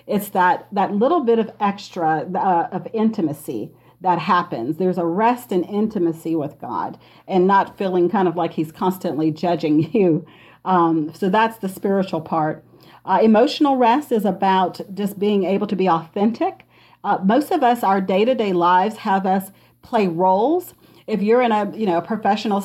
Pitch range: 180-225 Hz